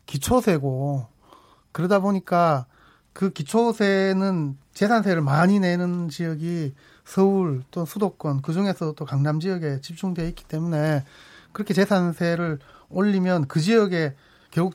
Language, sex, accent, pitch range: Korean, male, native, 150-190 Hz